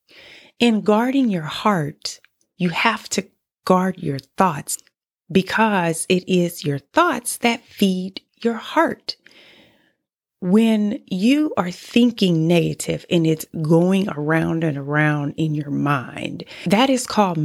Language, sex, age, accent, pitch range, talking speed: English, female, 30-49, American, 170-240 Hz, 125 wpm